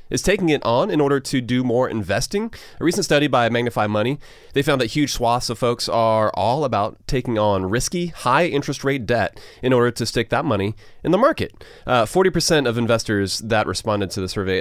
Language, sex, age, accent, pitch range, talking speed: English, male, 30-49, American, 100-140 Hz, 205 wpm